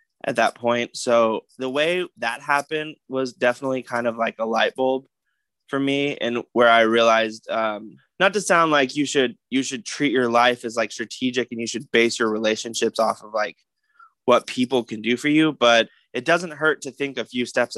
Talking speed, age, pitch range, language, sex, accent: 205 wpm, 20-39, 115-135 Hz, English, male, American